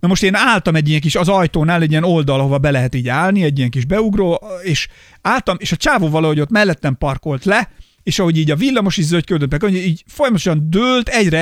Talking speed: 220 wpm